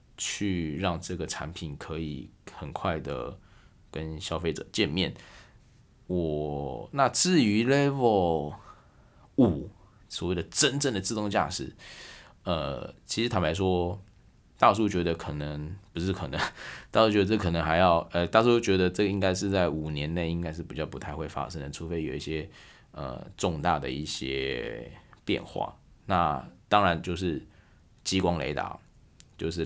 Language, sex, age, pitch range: Chinese, male, 20-39, 80-95 Hz